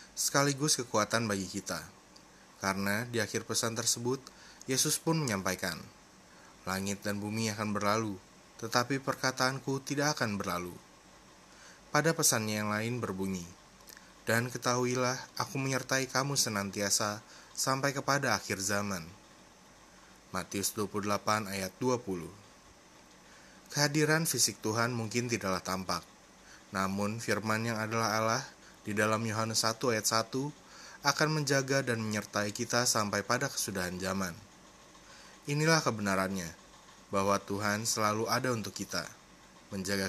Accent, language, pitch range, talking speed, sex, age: native, Indonesian, 100-125 Hz, 115 wpm, male, 20-39